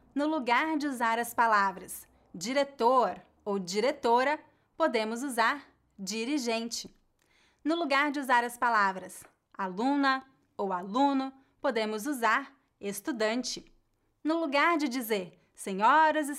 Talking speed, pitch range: 110 wpm, 225-290 Hz